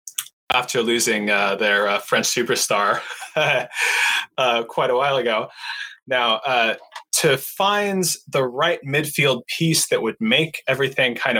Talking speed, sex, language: 130 wpm, male, English